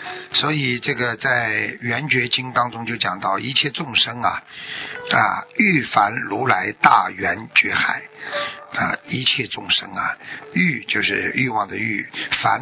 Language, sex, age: Chinese, male, 50-69